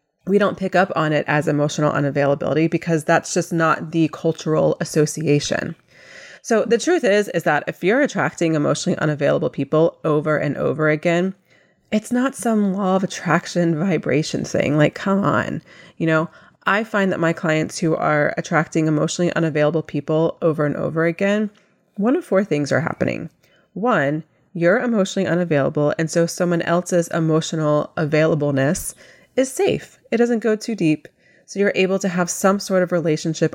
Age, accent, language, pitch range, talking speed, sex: 30-49, American, English, 155-195 Hz, 165 wpm, female